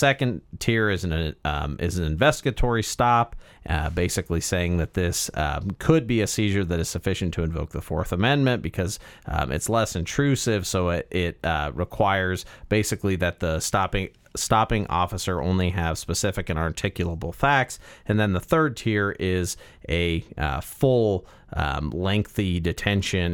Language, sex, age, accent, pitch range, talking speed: English, male, 40-59, American, 85-100 Hz, 155 wpm